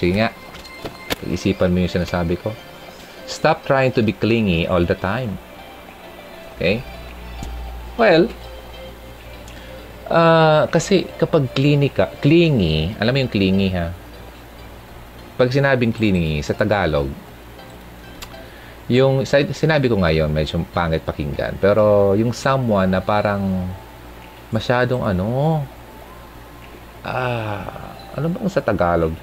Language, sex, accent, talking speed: Filipino, male, native, 105 wpm